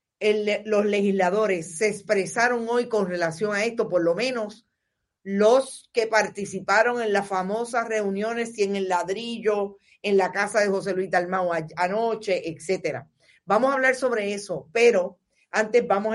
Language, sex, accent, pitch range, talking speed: Spanish, female, American, 185-235 Hz, 150 wpm